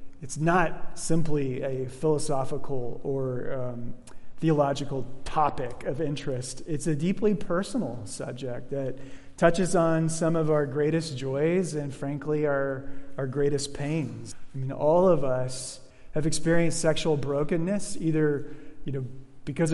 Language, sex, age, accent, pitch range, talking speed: English, male, 30-49, American, 135-165 Hz, 130 wpm